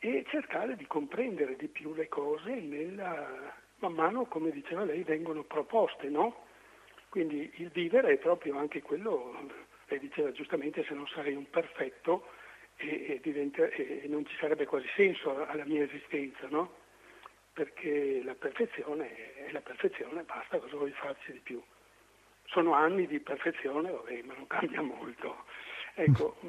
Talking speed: 150 wpm